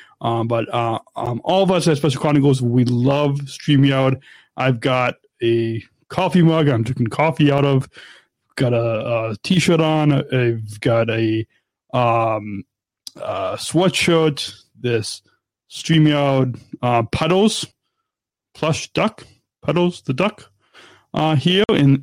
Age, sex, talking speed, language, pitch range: 30-49, male, 125 wpm, English, 120-145 Hz